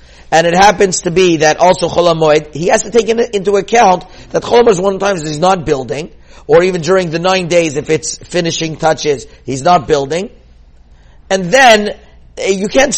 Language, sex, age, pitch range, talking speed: English, male, 50-69, 145-180 Hz, 190 wpm